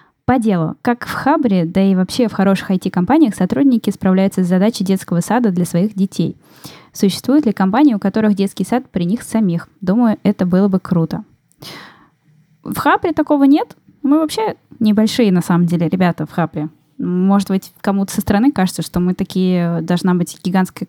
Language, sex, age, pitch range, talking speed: Russian, female, 10-29, 180-220 Hz, 170 wpm